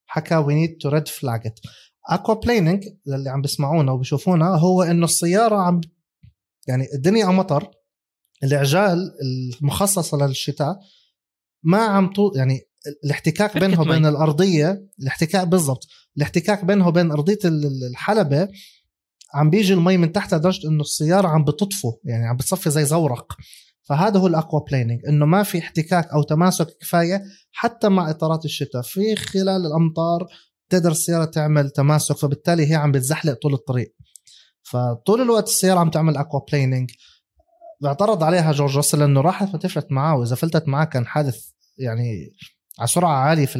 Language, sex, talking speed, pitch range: Arabic, male, 140 wpm, 140-185 Hz